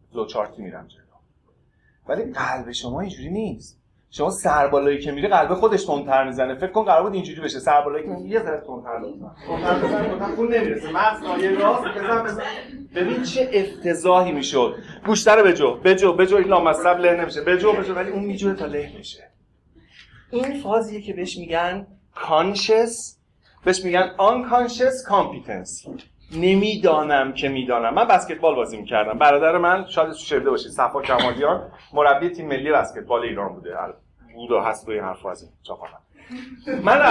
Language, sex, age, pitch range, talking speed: Persian, male, 30-49, 170-225 Hz, 155 wpm